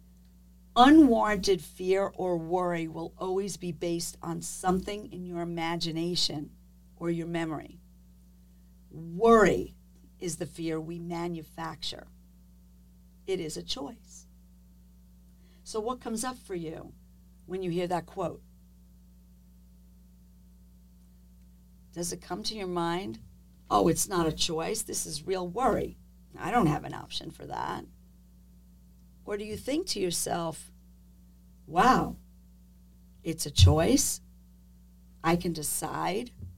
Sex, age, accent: female, 50-69, American